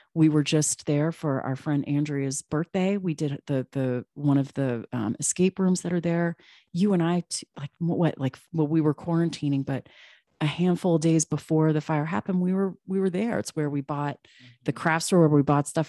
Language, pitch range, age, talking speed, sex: English, 140-160 Hz, 30-49, 225 wpm, female